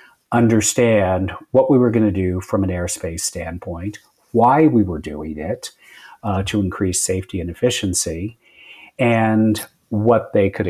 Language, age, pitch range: English, 40-59, 95-115 Hz